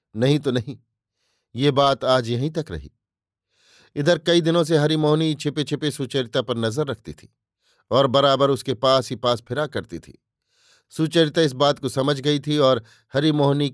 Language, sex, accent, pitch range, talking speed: Hindi, male, native, 115-150 Hz, 170 wpm